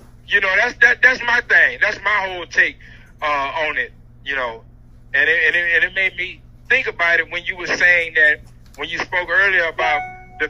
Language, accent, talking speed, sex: English, American, 215 wpm, male